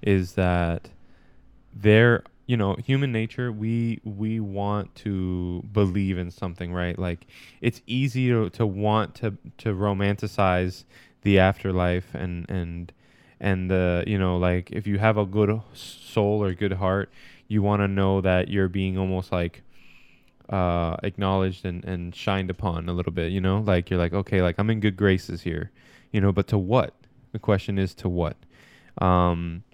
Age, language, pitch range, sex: 10-29, English, 90-105 Hz, male